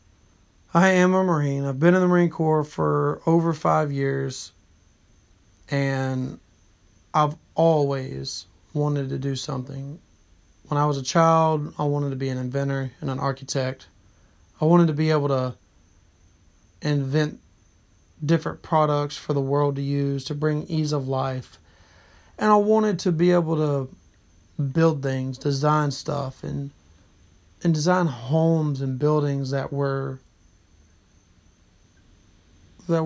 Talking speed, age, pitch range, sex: 135 wpm, 30-49, 95-155 Hz, male